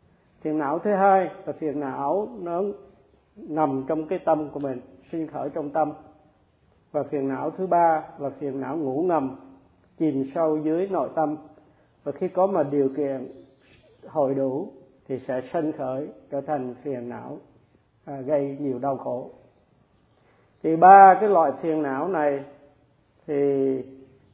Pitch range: 135-160 Hz